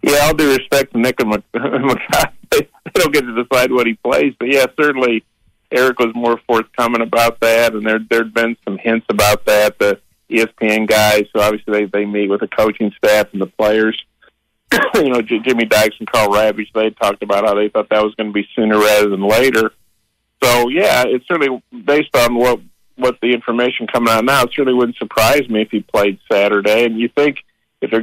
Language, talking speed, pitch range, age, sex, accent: English, 215 wpm, 110-120 Hz, 40-59, male, American